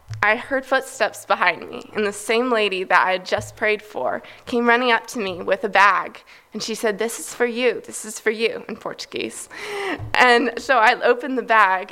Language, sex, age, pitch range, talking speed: English, female, 20-39, 200-250 Hz, 210 wpm